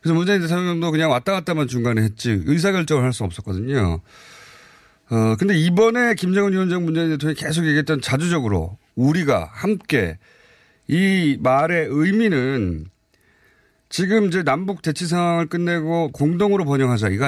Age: 30-49